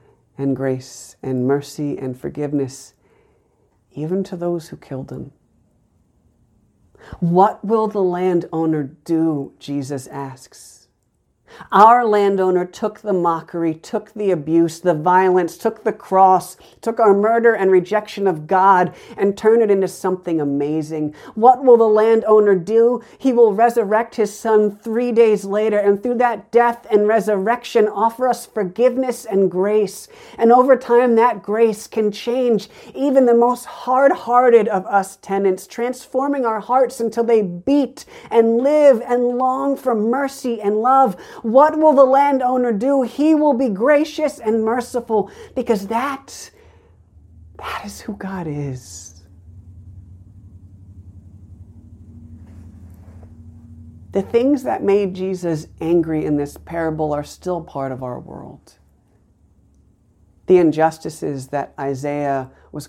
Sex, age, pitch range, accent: female, 60-79, 145-230 Hz, American